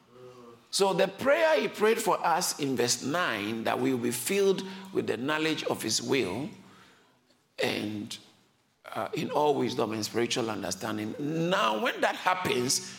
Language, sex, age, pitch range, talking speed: English, male, 50-69, 125-190 Hz, 155 wpm